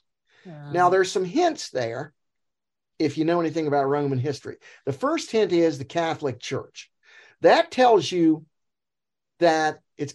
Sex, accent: male, American